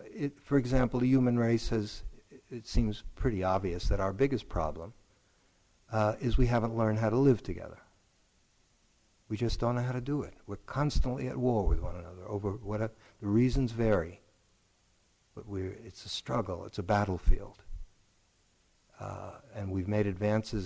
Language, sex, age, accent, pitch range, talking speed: English, male, 60-79, American, 95-120 Hz, 170 wpm